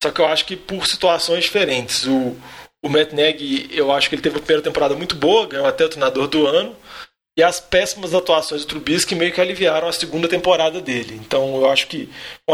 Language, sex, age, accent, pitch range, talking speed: Portuguese, male, 20-39, Brazilian, 155-190 Hz, 220 wpm